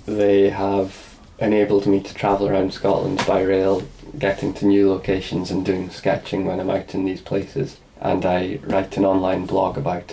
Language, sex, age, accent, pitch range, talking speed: English, male, 20-39, British, 95-100 Hz, 180 wpm